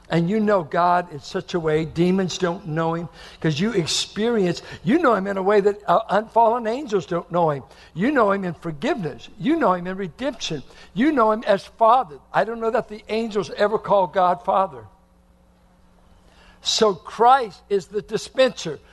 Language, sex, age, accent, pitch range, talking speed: English, male, 60-79, American, 190-275 Hz, 185 wpm